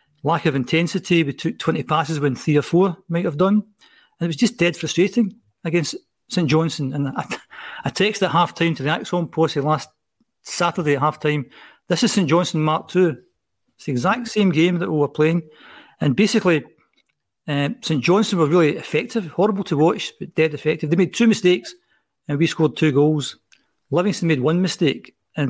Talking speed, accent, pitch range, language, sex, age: 190 wpm, British, 145-175 Hz, English, male, 40-59